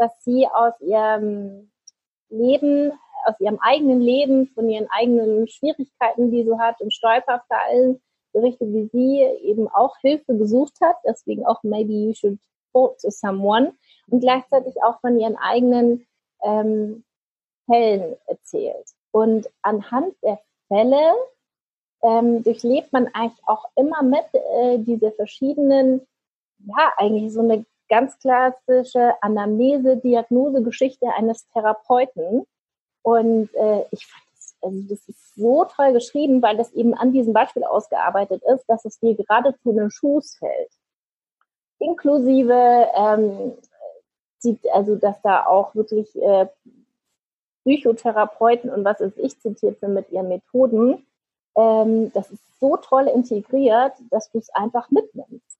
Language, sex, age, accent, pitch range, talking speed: German, female, 30-49, German, 215-260 Hz, 135 wpm